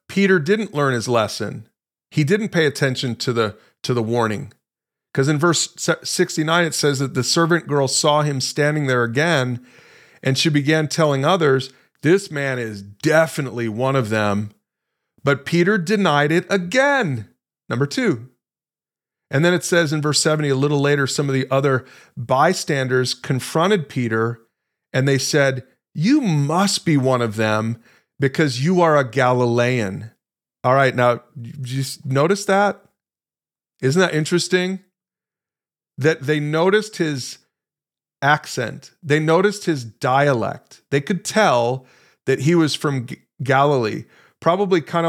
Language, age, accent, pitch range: English, 40-59, American, 125-160 Hz